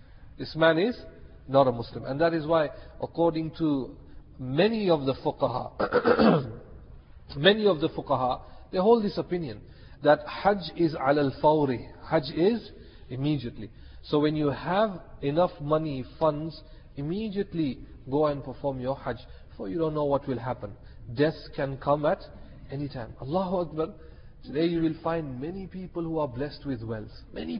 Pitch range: 140-185 Hz